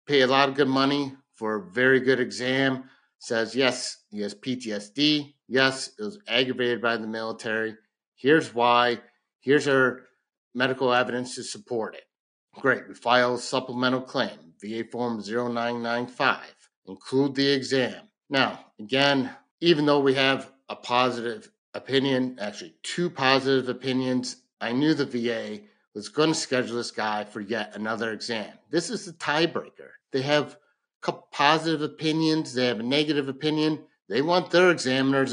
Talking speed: 150 wpm